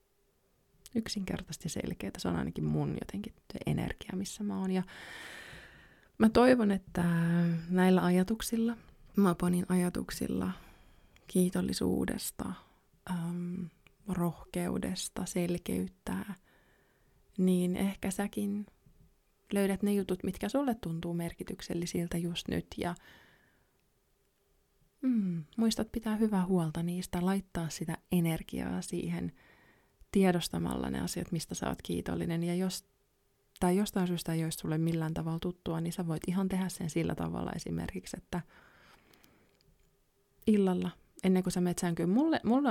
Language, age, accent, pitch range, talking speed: Finnish, 20-39, native, 165-195 Hz, 115 wpm